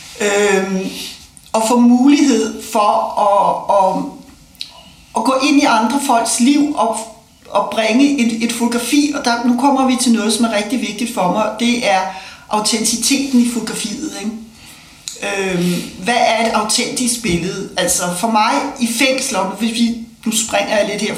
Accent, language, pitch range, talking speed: native, Danish, 195-240 Hz, 155 wpm